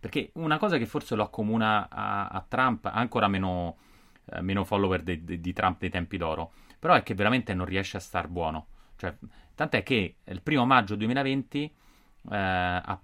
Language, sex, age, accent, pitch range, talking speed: Italian, male, 30-49, native, 90-110 Hz, 180 wpm